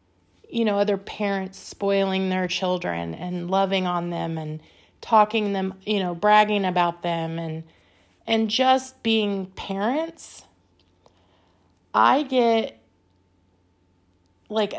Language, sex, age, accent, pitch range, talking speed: English, female, 30-49, American, 170-220 Hz, 110 wpm